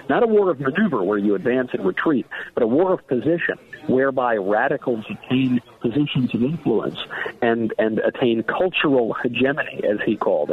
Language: English